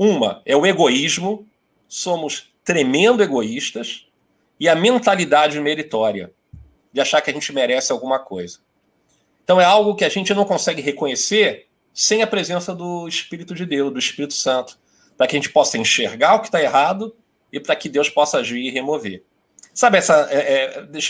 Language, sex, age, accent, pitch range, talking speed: Portuguese, male, 40-59, Brazilian, 130-175 Hz, 170 wpm